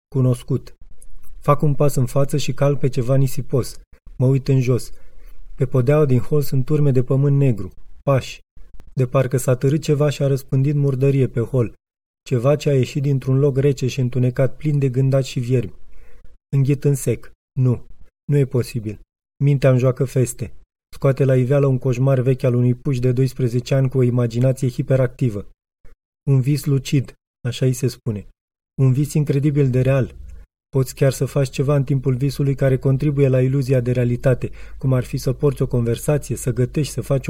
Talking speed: 180 wpm